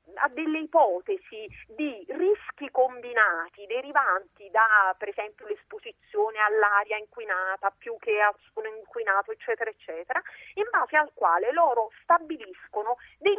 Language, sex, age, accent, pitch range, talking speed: Italian, female, 40-59, native, 235-395 Hz, 120 wpm